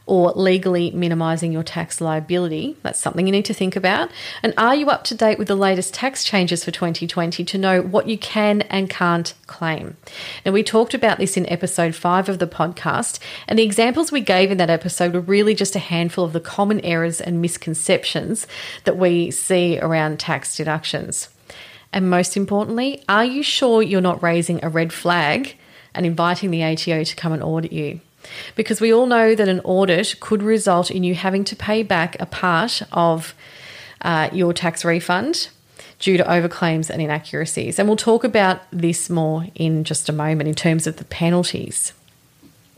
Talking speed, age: 185 wpm, 40-59